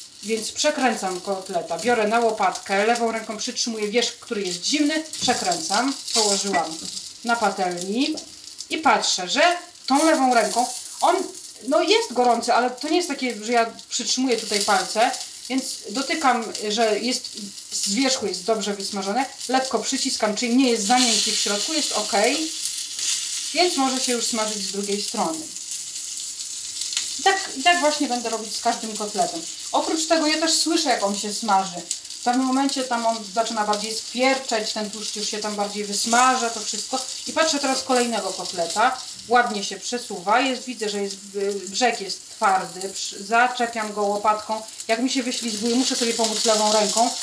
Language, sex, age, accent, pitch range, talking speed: Polish, female, 30-49, native, 215-265 Hz, 155 wpm